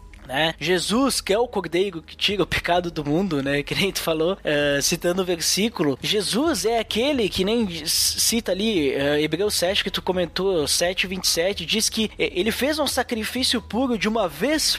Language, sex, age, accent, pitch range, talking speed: Portuguese, male, 20-39, Brazilian, 160-215 Hz, 185 wpm